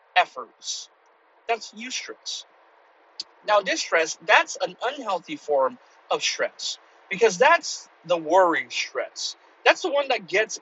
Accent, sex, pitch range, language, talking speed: American, male, 175-245 Hz, English, 120 wpm